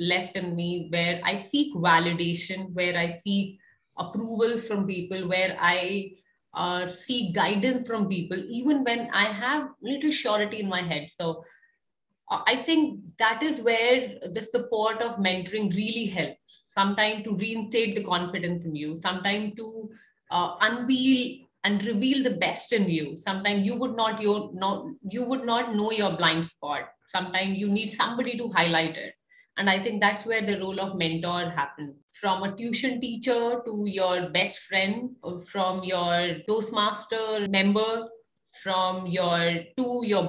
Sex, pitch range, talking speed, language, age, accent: female, 180-225 Hz, 155 wpm, English, 30-49, Indian